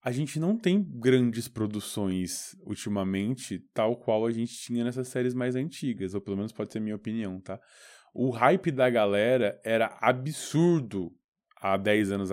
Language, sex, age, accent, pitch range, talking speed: Portuguese, male, 20-39, Brazilian, 115-180 Hz, 160 wpm